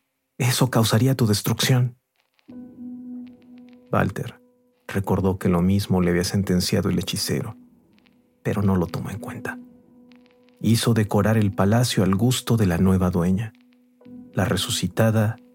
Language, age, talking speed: Spanish, 50-69, 125 wpm